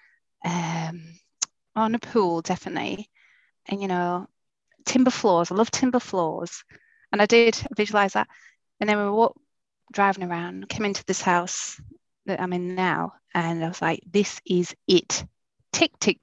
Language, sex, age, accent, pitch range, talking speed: English, female, 30-49, British, 175-225 Hz, 155 wpm